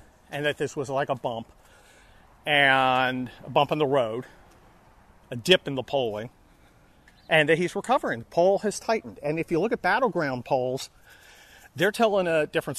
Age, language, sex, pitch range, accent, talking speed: 40-59, English, male, 125-165 Hz, American, 175 wpm